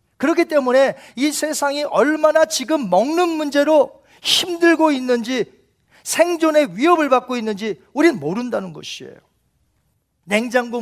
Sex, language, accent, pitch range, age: male, Korean, native, 230-300 Hz, 40-59